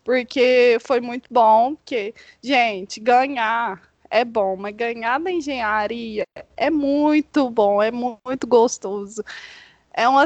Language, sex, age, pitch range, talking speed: Portuguese, female, 10-29, 235-285 Hz, 125 wpm